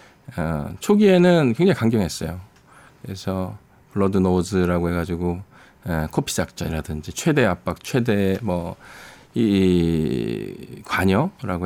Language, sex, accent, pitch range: Korean, male, native, 95-125 Hz